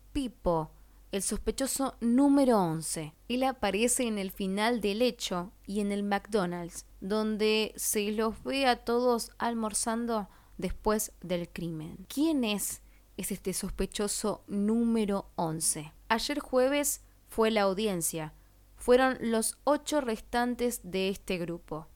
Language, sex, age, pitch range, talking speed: Spanish, female, 20-39, 180-235 Hz, 125 wpm